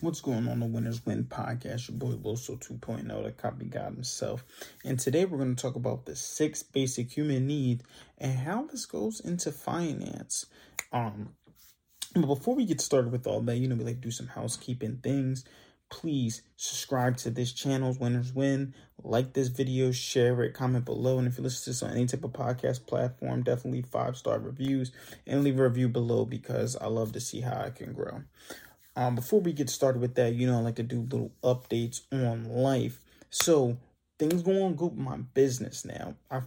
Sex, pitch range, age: male, 125-145 Hz, 20-39